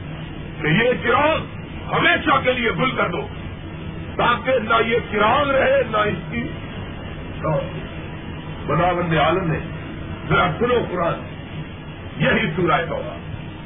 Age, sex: 50-69, male